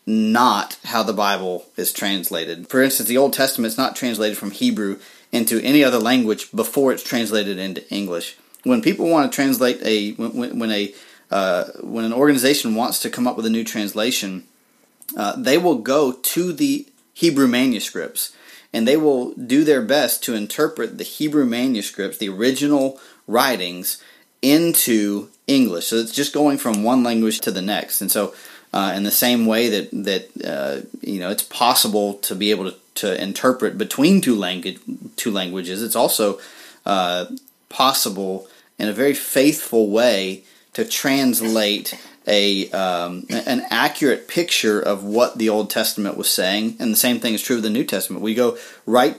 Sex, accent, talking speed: male, American, 170 wpm